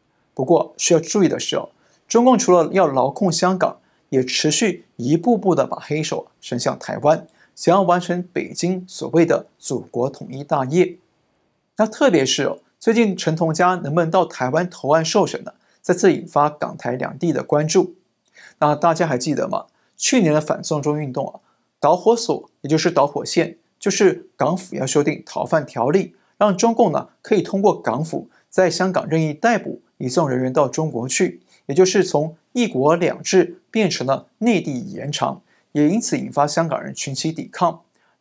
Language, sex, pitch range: Chinese, male, 150-195 Hz